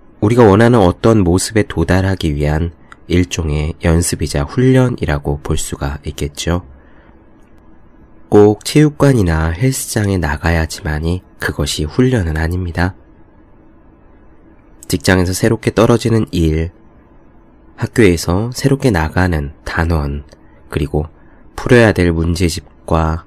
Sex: male